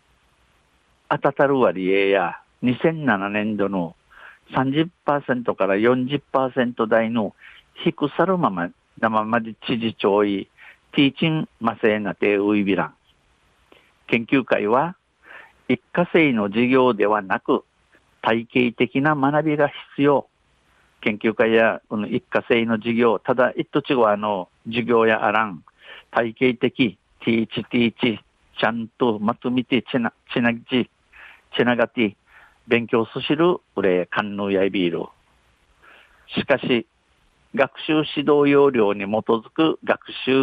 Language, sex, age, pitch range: Japanese, male, 50-69, 110-130 Hz